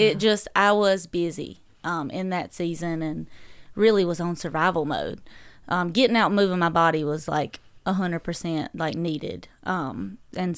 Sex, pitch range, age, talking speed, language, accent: female, 170-210 Hz, 30-49, 165 wpm, English, American